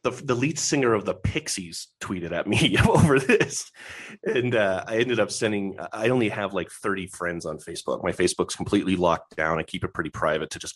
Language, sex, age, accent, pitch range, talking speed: English, male, 30-49, American, 90-115 Hz, 210 wpm